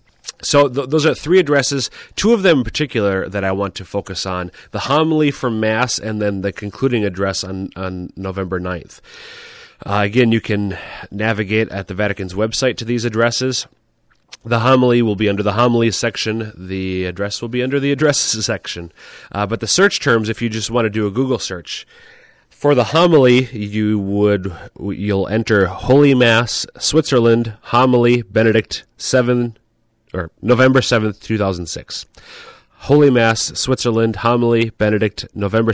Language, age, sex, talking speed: English, 30-49, male, 165 wpm